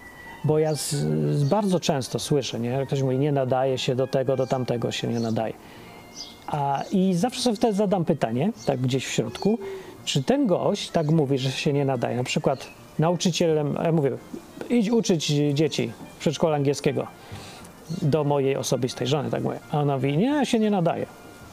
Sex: male